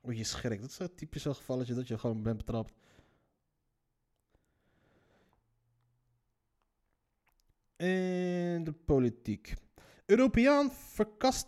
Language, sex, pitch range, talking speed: Dutch, male, 130-210 Hz, 100 wpm